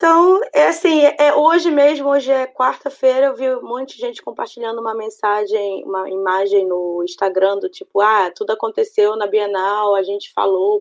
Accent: Brazilian